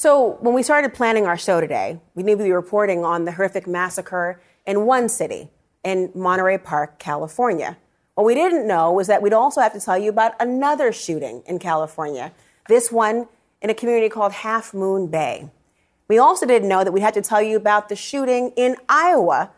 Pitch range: 185-220 Hz